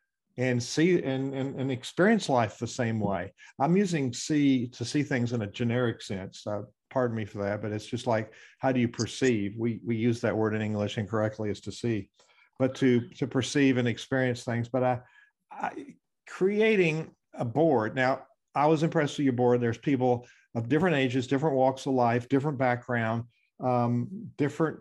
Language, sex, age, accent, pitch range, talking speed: English, male, 50-69, American, 120-150 Hz, 185 wpm